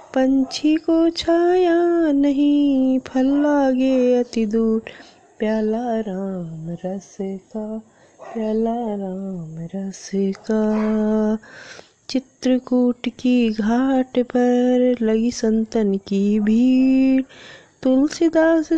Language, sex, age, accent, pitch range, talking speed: Hindi, female, 20-39, native, 215-260 Hz, 80 wpm